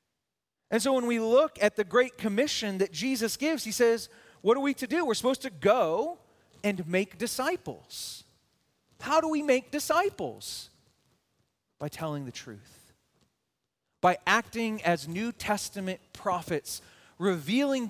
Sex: male